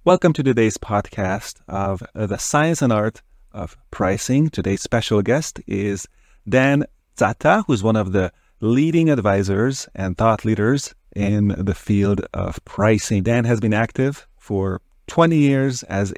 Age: 30-49